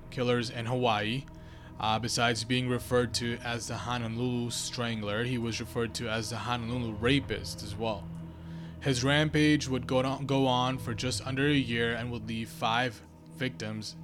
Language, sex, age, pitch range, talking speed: English, male, 20-39, 110-130 Hz, 165 wpm